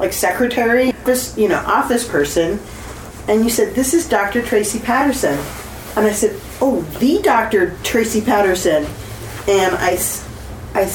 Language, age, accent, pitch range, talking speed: English, 40-59, American, 150-215 Hz, 140 wpm